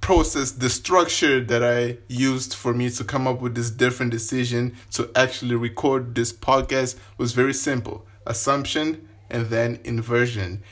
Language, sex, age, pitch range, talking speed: English, male, 20-39, 115-130 Hz, 150 wpm